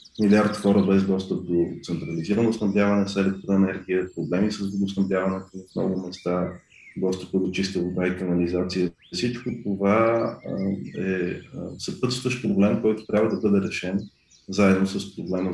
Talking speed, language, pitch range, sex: 140 wpm, Bulgarian, 95-105 Hz, male